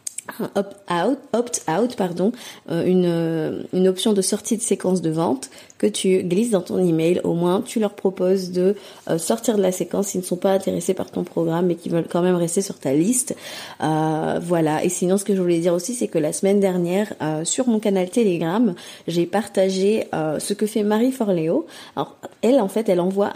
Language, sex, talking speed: French, female, 215 wpm